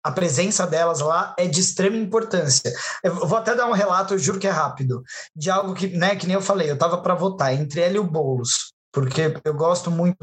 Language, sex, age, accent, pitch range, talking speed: Portuguese, male, 20-39, Brazilian, 155-205 Hz, 235 wpm